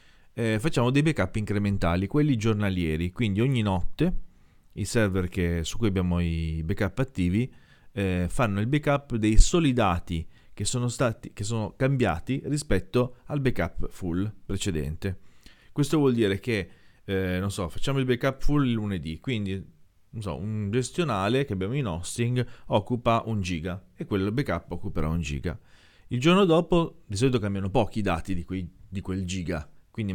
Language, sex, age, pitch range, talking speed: Italian, male, 30-49, 90-120 Hz, 165 wpm